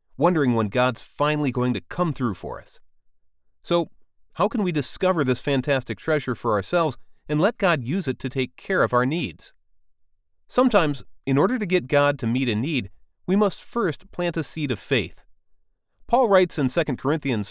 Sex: male